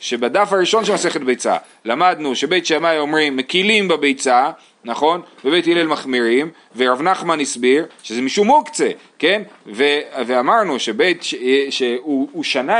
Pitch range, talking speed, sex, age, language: 145-225 Hz, 130 wpm, male, 30-49, Hebrew